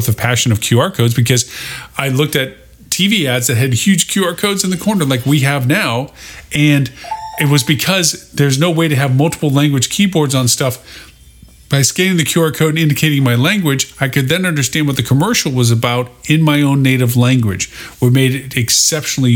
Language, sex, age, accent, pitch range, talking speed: English, male, 40-59, American, 125-155 Hz, 200 wpm